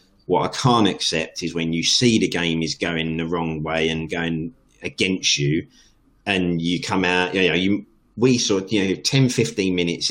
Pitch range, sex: 80-100 Hz, male